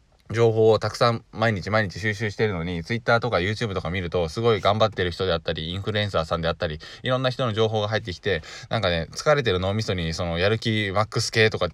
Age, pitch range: 20-39, 95-125 Hz